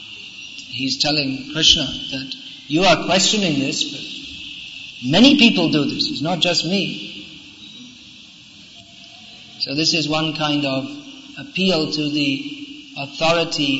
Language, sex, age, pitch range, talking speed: English, male, 40-59, 140-200 Hz, 115 wpm